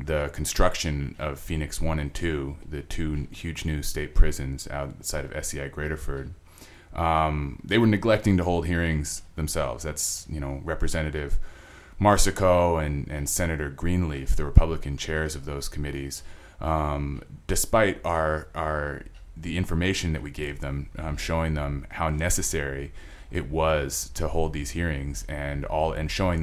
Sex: male